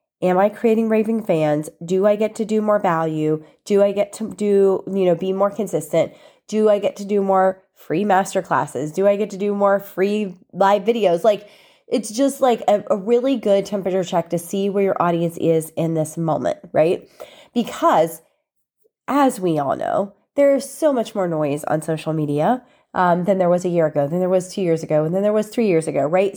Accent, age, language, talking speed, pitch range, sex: American, 30-49, English, 215 wpm, 180-245 Hz, female